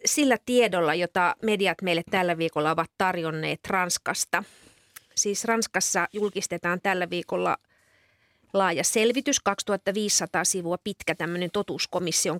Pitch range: 175-220 Hz